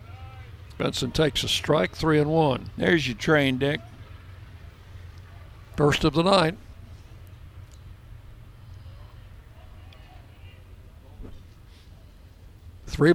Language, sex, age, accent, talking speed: English, male, 60-79, American, 75 wpm